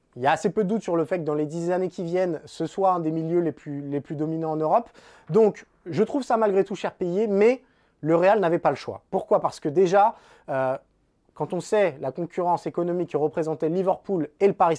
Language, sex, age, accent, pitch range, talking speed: French, male, 20-39, French, 155-200 Hz, 250 wpm